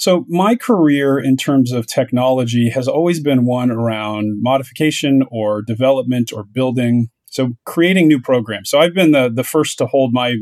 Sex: male